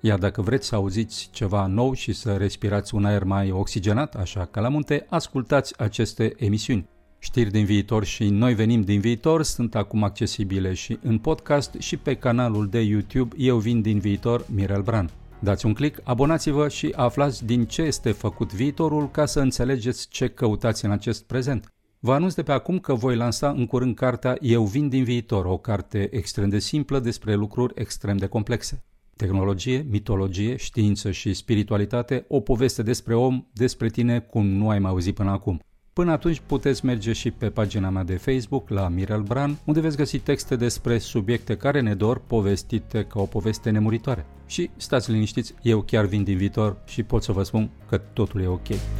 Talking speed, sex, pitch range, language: 185 wpm, male, 105-130 Hz, Romanian